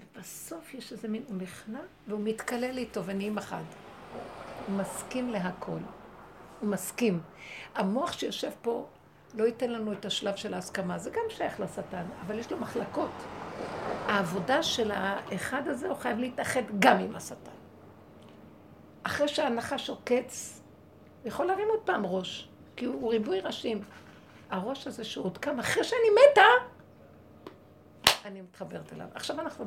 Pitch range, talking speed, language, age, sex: 195-255 Hz, 140 wpm, Hebrew, 60-79, female